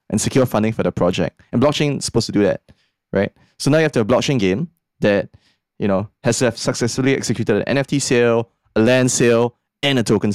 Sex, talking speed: male, 230 wpm